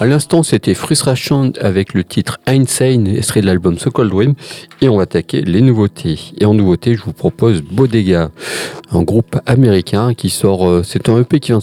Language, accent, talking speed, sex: French, French, 190 wpm, male